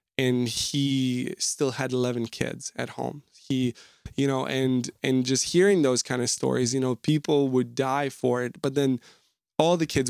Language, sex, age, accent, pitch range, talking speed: English, male, 20-39, American, 125-145 Hz, 185 wpm